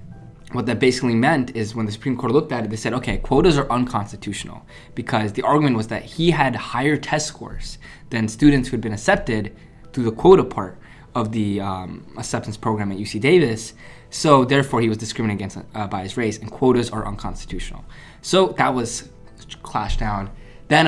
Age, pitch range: 20-39, 110-130 Hz